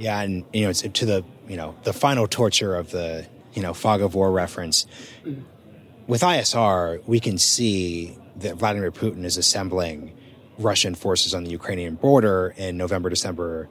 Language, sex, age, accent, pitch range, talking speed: English, male, 30-49, American, 90-115 Hz, 165 wpm